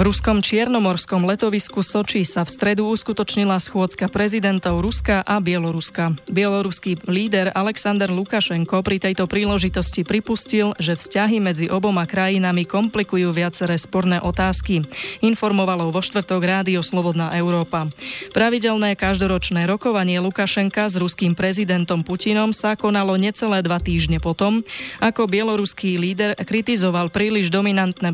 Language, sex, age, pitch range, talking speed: Slovak, female, 20-39, 175-205 Hz, 120 wpm